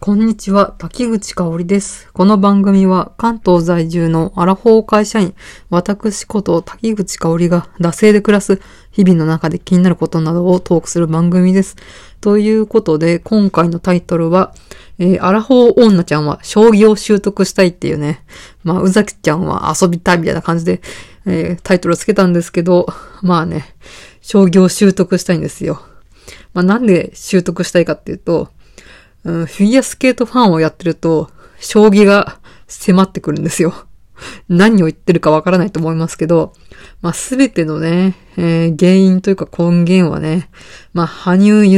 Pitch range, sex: 170-200 Hz, female